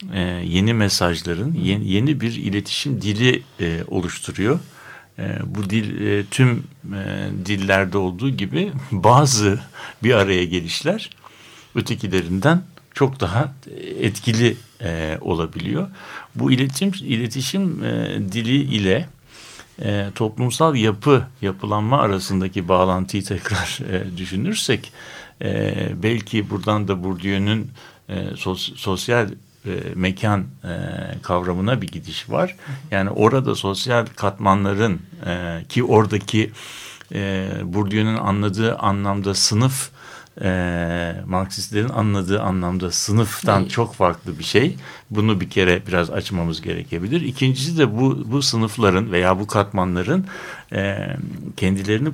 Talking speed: 95 wpm